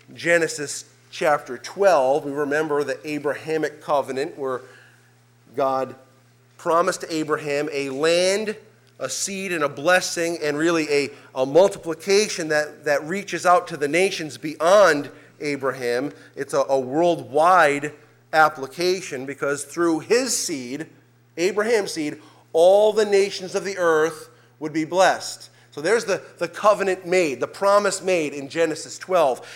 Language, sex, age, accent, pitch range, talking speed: English, male, 30-49, American, 130-170 Hz, 130 wpm